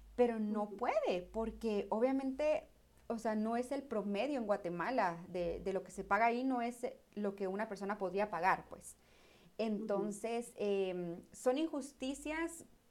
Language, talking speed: Spanish, 155 wpm